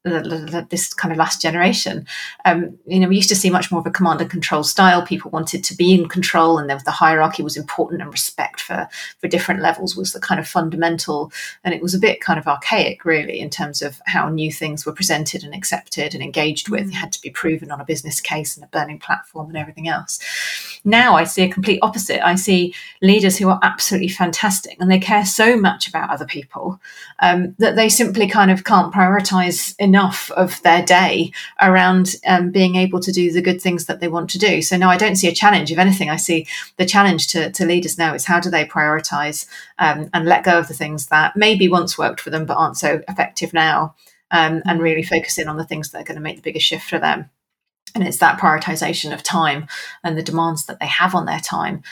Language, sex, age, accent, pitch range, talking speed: English, female, 30-49, British, 160-185 Hz, 230 wpm